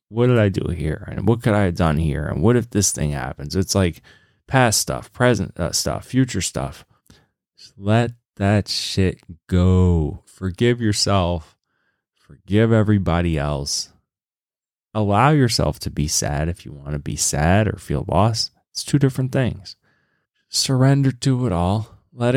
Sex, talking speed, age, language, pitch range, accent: male, 155 wpm, 30-49, English, 85-120 Hz, American